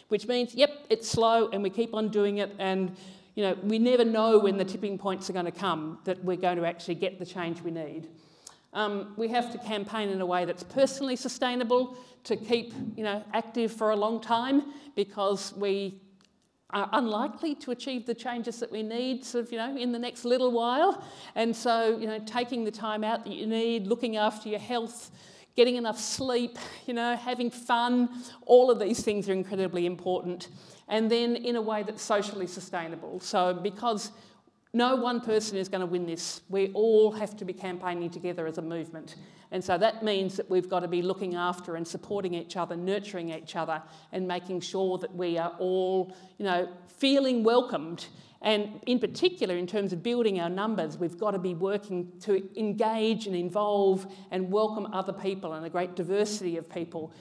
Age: 50-69